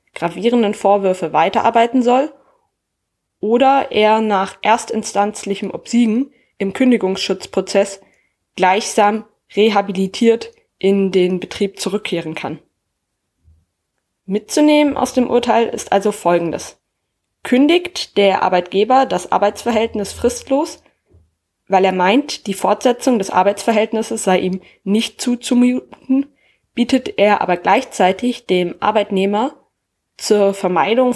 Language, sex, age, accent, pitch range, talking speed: German, female, 20-39, German, 185-245 Hz, 95 wpm